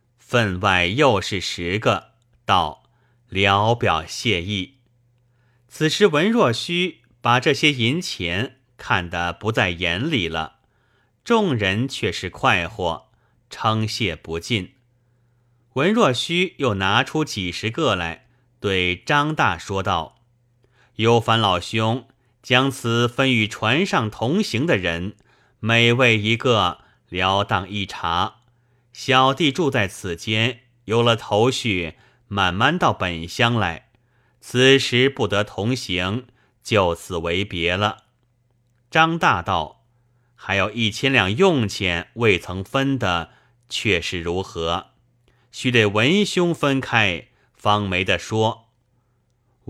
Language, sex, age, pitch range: Chinese, male, 30-49, 100-125 Hz